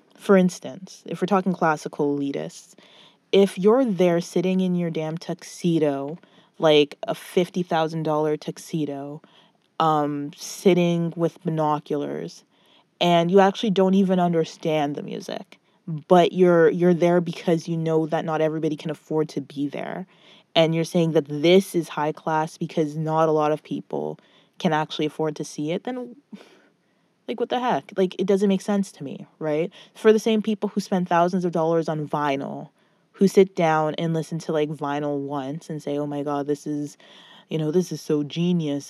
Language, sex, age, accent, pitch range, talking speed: English, female, 20-39, American, 155-185 Hz, 175 wpm